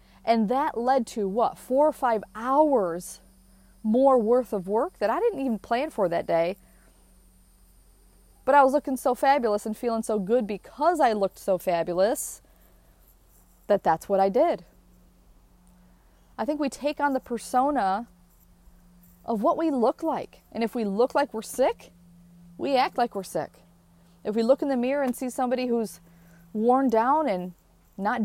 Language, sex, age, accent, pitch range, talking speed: English, female, 30-49, American, 175-270 Hz, 170 wpm